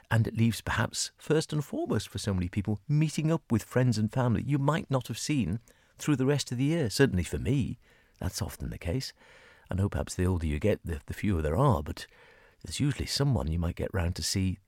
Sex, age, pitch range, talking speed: male, 40-59, 85-120 Hz, 230 wpm